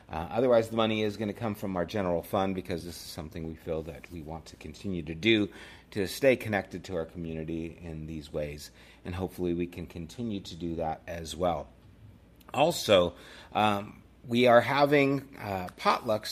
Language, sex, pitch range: English, male, 85-110 Hz